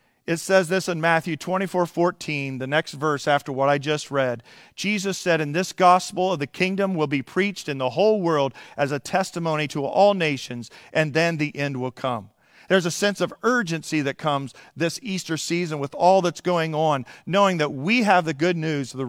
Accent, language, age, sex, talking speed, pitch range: American, English, 40-59, male, 205 wpm, 140-185 Hz